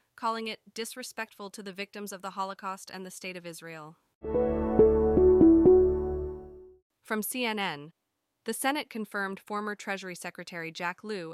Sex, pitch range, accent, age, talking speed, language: female, 175-215 Hz, American, 20-39, 125 wpm, English